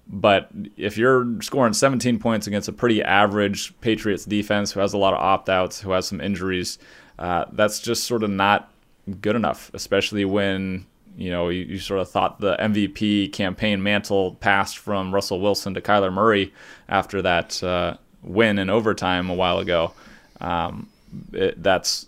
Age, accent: 30-49, American